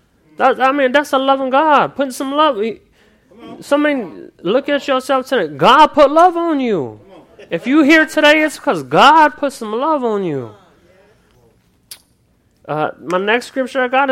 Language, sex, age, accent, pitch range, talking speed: English, male, 30-49, American, 170-255 Hz, 160 wpm